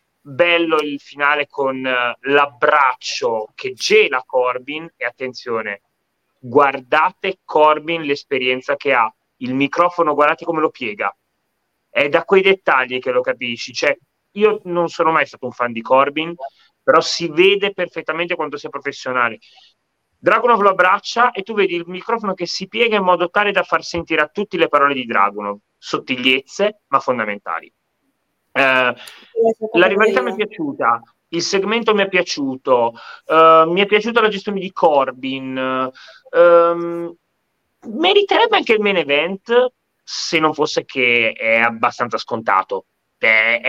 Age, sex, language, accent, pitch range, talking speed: 30-49, male, Italian, native, 135-200 Hz, 145 wpm